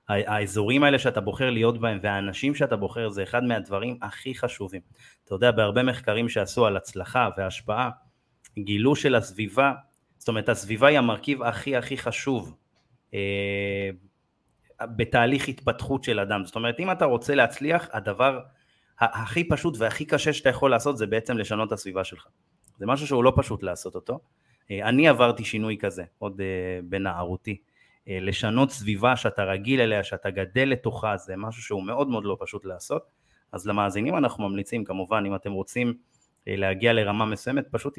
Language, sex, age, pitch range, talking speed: Hebrew, male, 30-49, 100-125 Hz, 160 wpm